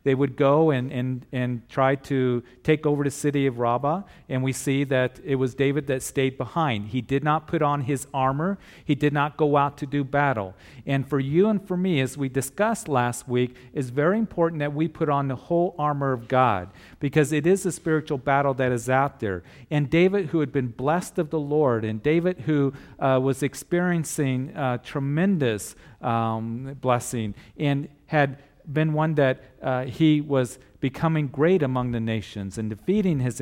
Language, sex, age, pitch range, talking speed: English, male, 40-59, 125-155 Hz, 190 wpm